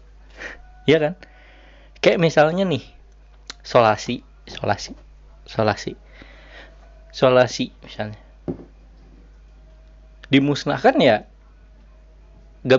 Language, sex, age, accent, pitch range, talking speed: Indonesian, male, 20-39, native, 120-170 Hz, 60 wpm